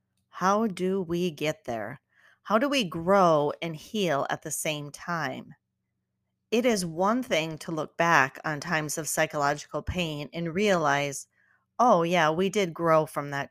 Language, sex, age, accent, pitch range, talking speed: English, female, 40-59, American, 150-185 Hz, 160 wpm